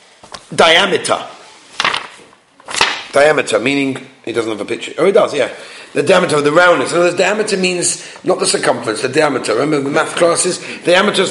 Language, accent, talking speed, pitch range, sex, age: English, British, 170 wpm, 150-225 Hz, male, 40-59